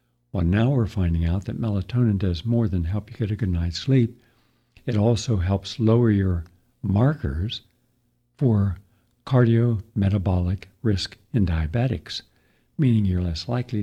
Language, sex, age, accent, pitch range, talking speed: English, male, 60-79, American, 95-120 Hz, 140 wpm